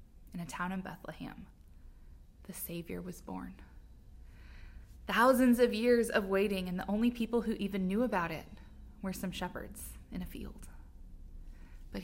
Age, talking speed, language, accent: 20-39, 150 wpm, English, American